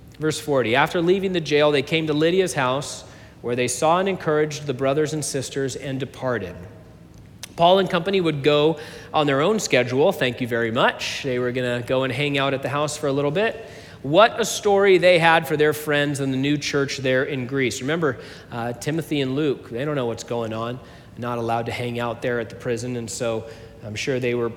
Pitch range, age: 125-155 Hz, 40-59